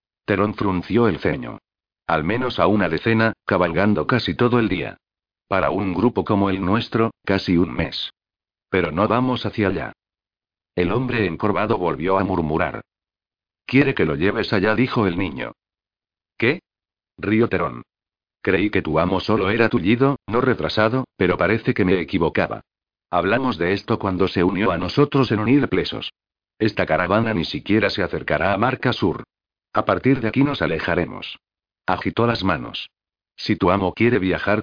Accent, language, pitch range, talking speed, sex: Spanish, Spanish, 95-115 Hz, 160 wpm, male